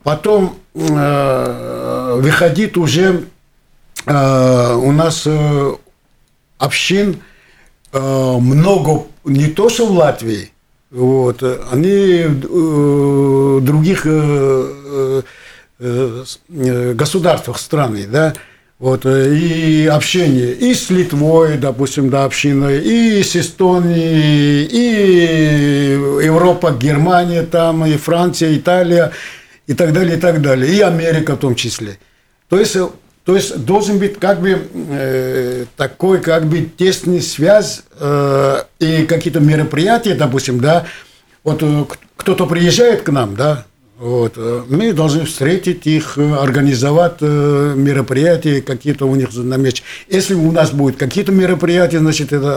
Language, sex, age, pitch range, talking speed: Russian, male, 60-79, 135-175 Hz, 105 wpm